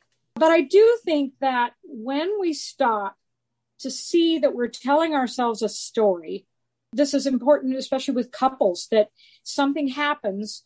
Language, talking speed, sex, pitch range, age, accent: English, 140 wpm, female, 210-270 Hz, 50-69, American